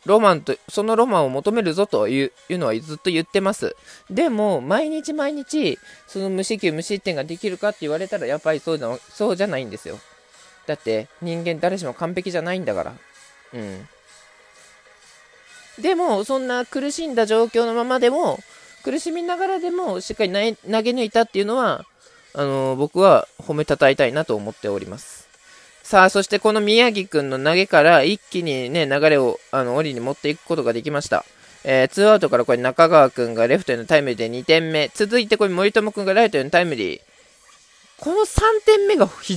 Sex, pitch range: male, 145-230 Hz